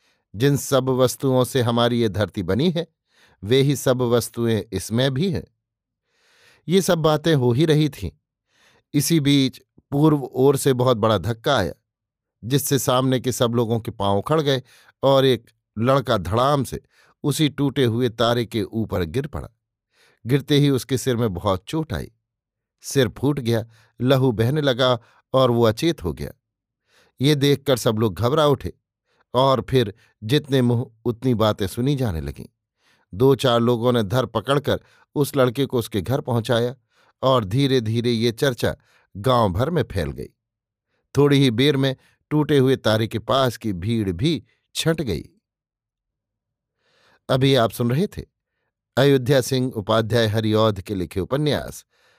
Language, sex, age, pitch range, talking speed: Hindi, male, 50-69, 115-140 Hz, 155 wpm